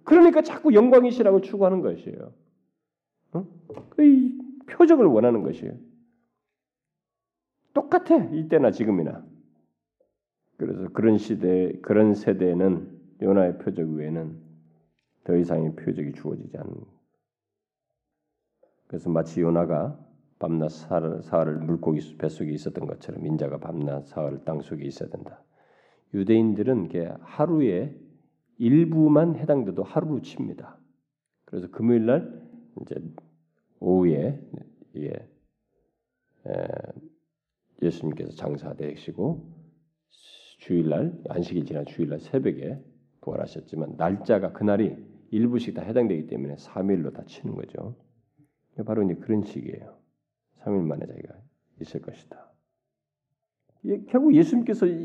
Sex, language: male, Korean